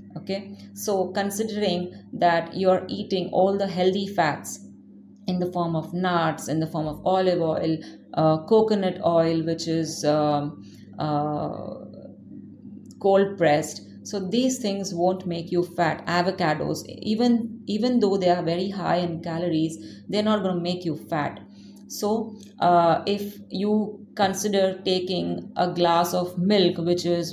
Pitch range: 170-200 Hz